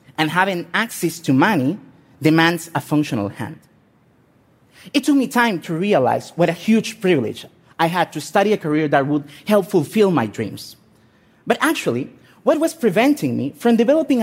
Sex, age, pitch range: male, 30-49, 155-225 Hz